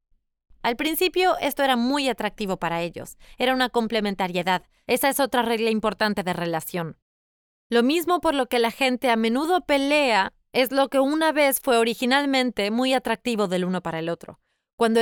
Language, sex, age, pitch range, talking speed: Spanish, female, 20-39, 215-280 Hz, 170 wpm